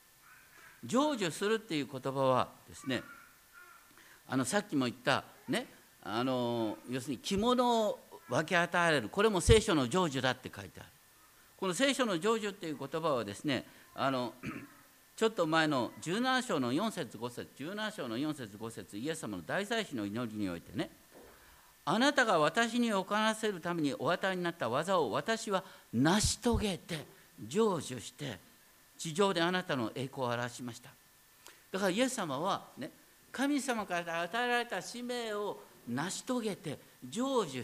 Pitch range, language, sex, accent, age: 130-220 Hz, Japanese, male, native, 50-69